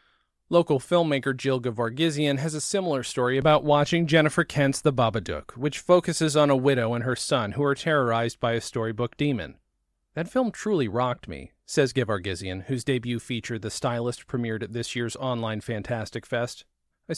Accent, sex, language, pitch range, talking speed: American, male, English, 110-150 Hz, 170 wpm